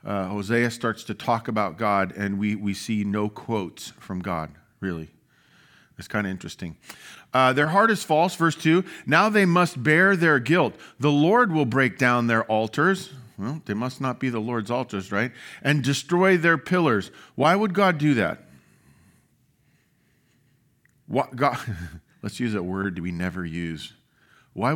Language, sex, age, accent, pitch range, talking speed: English, male, 40-59, American, 105-155 Hz, 165 wpm